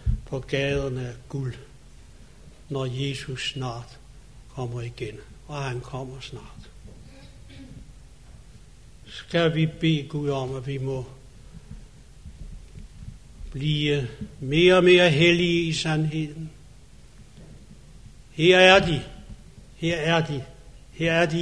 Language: Danish